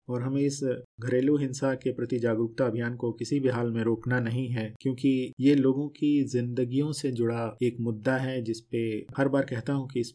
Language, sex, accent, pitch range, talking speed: Hindi, male, native, 120-145 Hz, 200 wpm